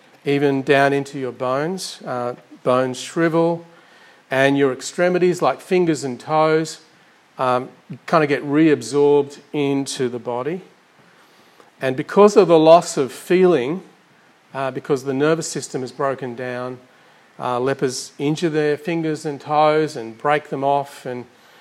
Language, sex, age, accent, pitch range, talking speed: English, male, 40-59, Australian, 125-155 Hz, 140 wpm